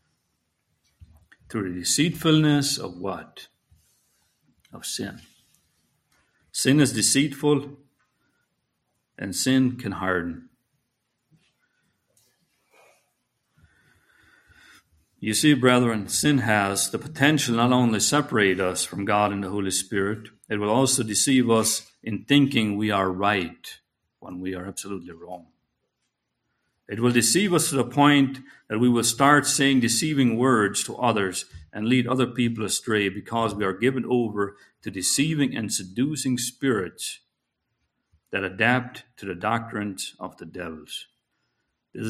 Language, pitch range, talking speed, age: English, 100-135 Hz, 125 wpm, 50-69